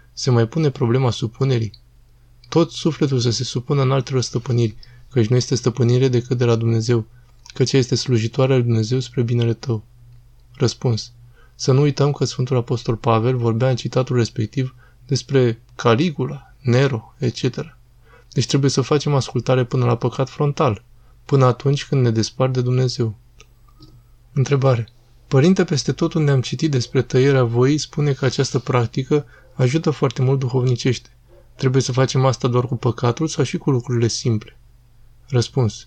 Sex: male